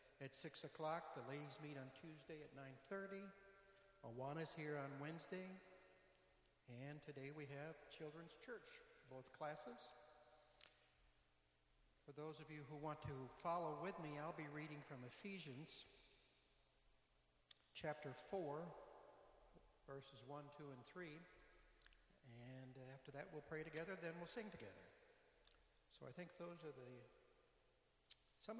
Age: 60-79